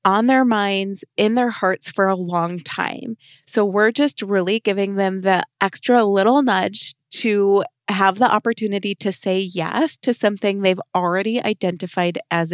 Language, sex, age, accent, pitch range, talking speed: English, female, 20-39, American, 185-225 Hz, 160 wpm